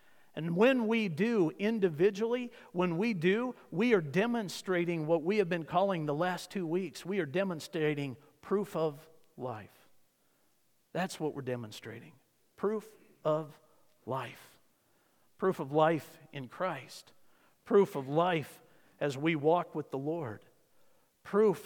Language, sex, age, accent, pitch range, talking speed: English, male, 50-69, American, 135-180 Hz, 135 wpm